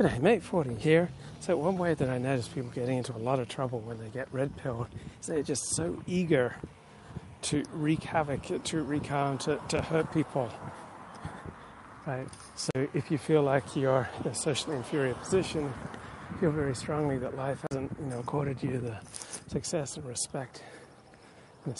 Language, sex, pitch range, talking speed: English, male, 125-150 Hz, 175 wpm